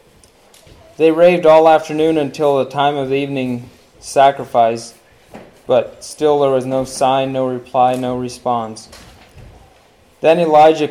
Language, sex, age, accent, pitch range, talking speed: English, male, 20-39, American, 125-155 Hz, 125 wpm